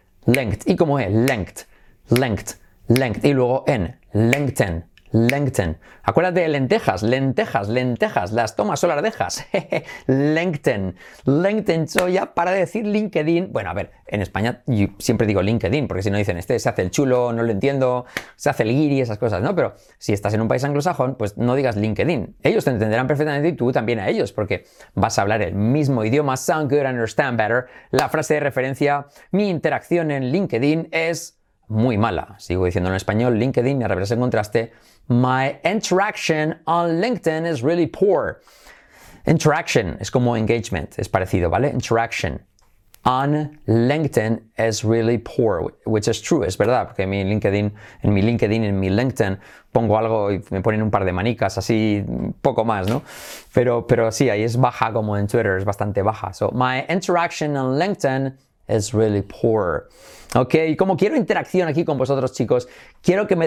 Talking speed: 175 wpm